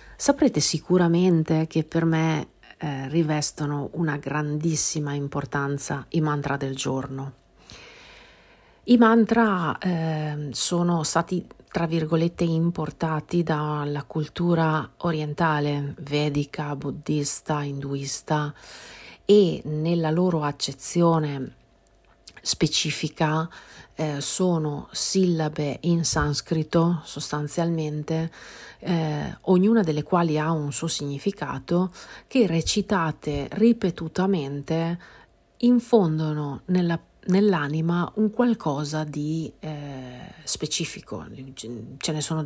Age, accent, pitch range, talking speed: 40-59, native, 145-170 Hz, 85 wpm